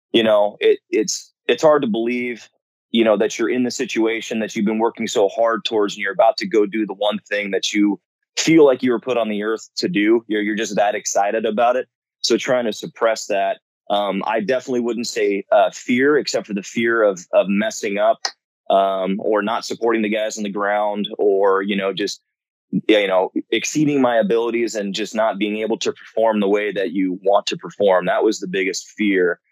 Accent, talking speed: American, 220 wpm